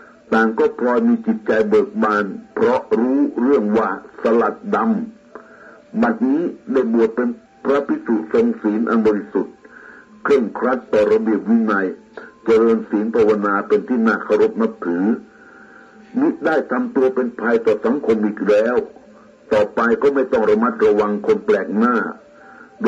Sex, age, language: male, 60-79, Thai